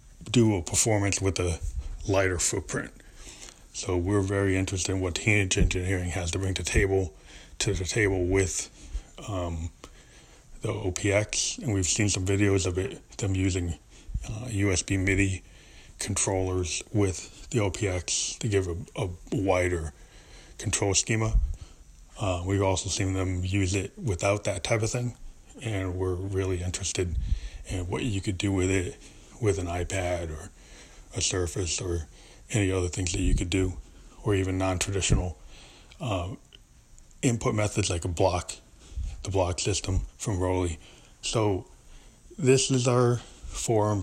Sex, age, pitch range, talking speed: male, 20-39, 90-105 Hz, 145 wpm